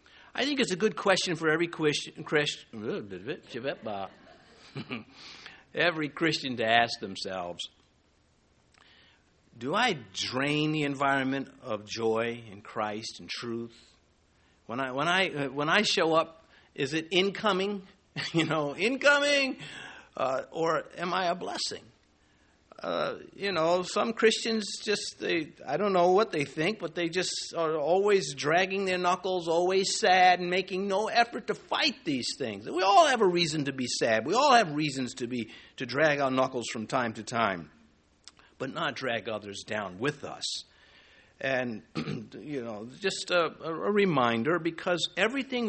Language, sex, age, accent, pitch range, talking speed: English, male, 60-79, American, 120-190 Hz, 150 wpm